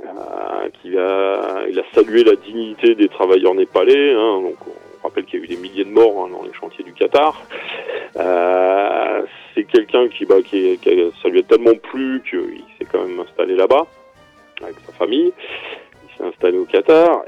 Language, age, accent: French, 30-49, French